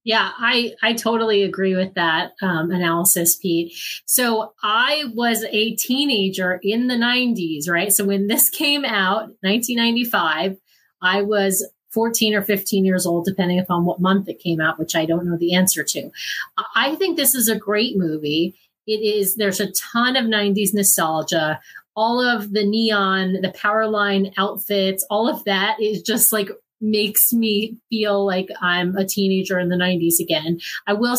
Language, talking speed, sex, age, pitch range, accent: English, 170 wpm, female, 30-49, 185-225 Hz, American